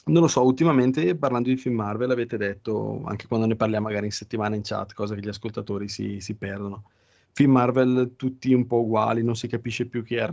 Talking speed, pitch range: 225 wpm, 100-120 Hz